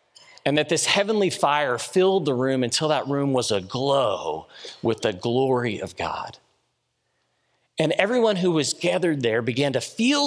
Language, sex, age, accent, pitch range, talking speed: English, male, 30-49, American, 120-175 Hz, 160 wpm